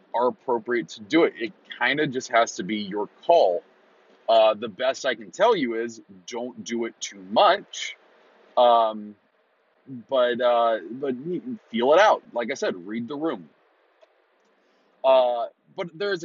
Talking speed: 160 wpm